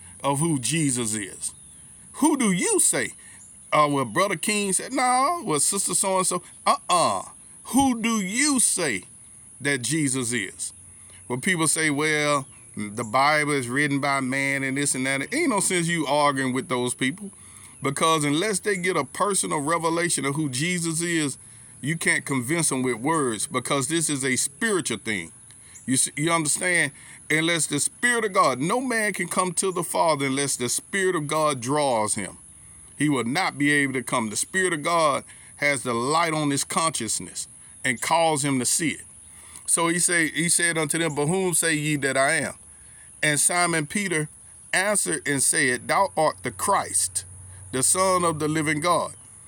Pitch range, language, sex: 130-175 Hz, English, male